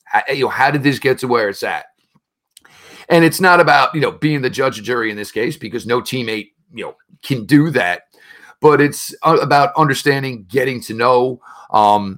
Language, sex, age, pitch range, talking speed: English, male, 40-59, 120-145 Hz, 200 wpm